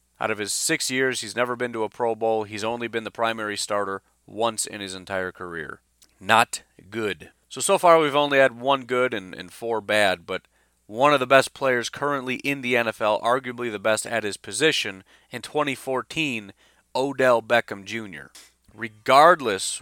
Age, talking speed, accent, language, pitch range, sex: 30-49, 180 wpm, American, English, 100-130 Hz, male